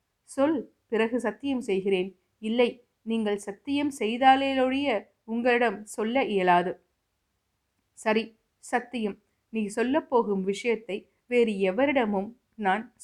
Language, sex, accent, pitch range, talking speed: Tamil, female, native, 200-255 Hz, 95 wpm